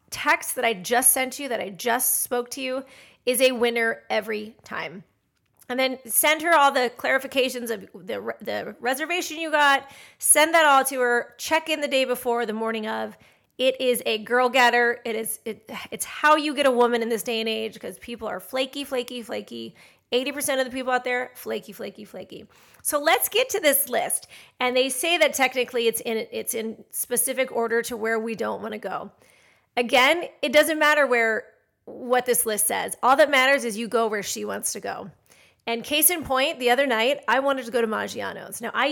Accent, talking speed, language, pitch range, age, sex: American, 210 wpm, English, 230-275 Hz, 30-49, female